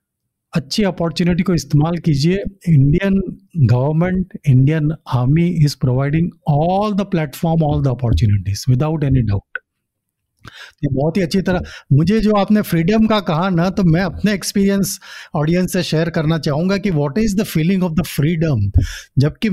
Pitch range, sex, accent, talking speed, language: 145-190 Hz, male, native, 150 wpm, Hindi